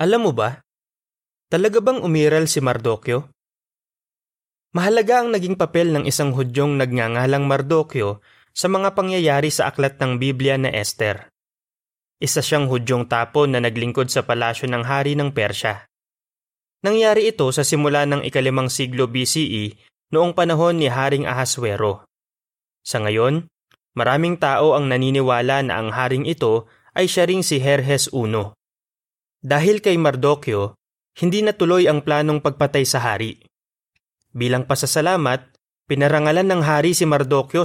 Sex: male